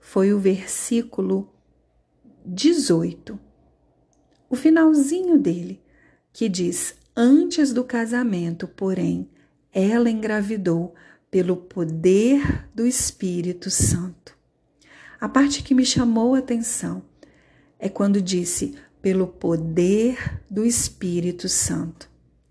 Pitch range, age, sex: 185-240 Hz, 40-59, female